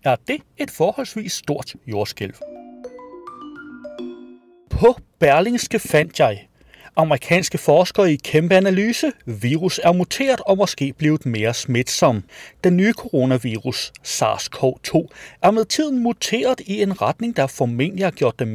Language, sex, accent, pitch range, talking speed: Danish, male, native, 130-215 Hz, 125 wpm